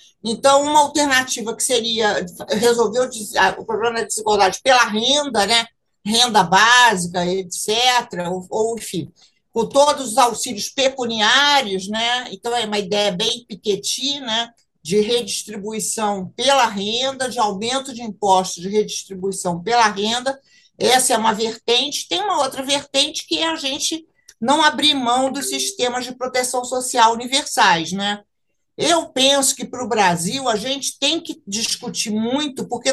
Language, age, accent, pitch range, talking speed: Portuguese, 50-69, Brazilian, 205-270 Hz, 145 wpm